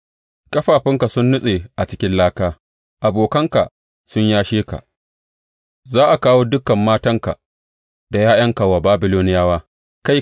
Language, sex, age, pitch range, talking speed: English, male, 30-49, 80-110 Hz, 90 wpm